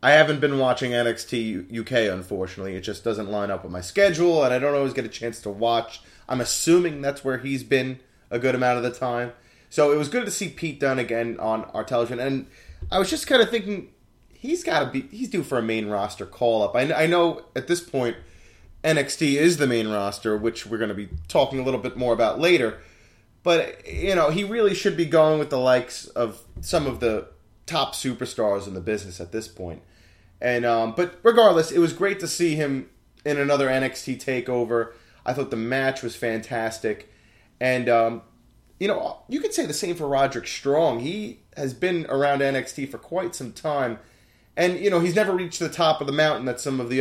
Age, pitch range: 30-49, 115-160 Hz